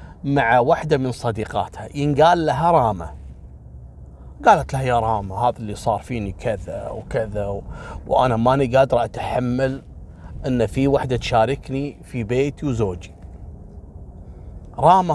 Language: Arabic